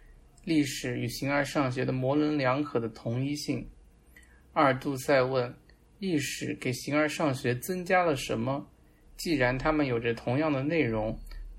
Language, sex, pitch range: Chinese, male, 120-150 Hz